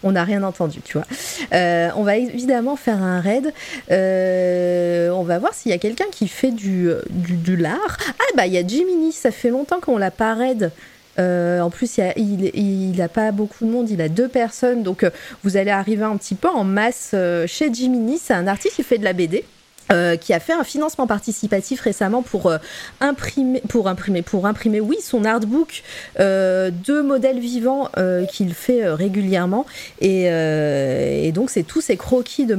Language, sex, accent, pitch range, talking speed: French, female, French, 180-255 Hz, 205 wpm